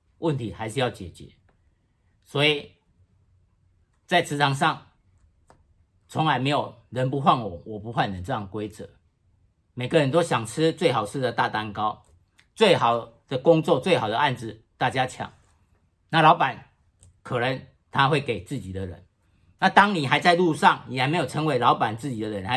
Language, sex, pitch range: Chinese, male, 95-150 Hz